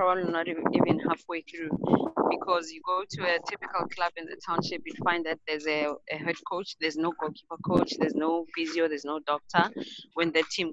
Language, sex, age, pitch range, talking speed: English, female, 20-39, 160-185 Hz, 205 wpm